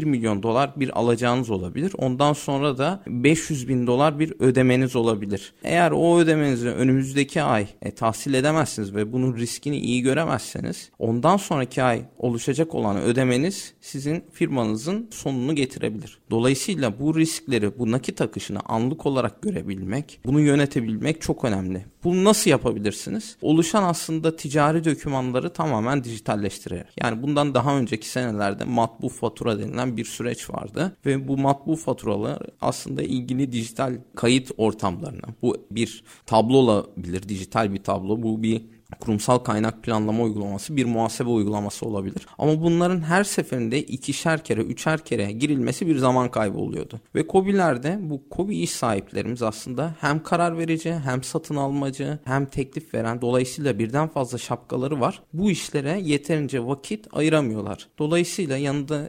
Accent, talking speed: native, 140 wpm